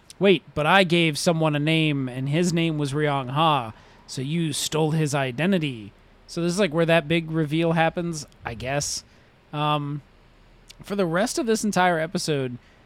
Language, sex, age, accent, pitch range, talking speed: English, male, 20-39, American, 140-175 Hz, 175 wpm